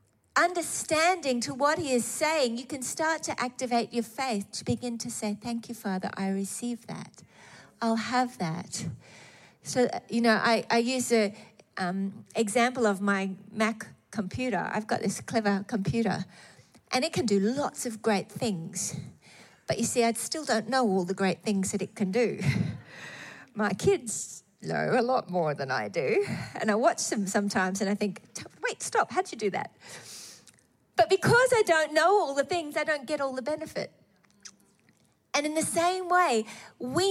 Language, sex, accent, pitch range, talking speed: English, female, Australian, 215-305 Hz, 180 wpm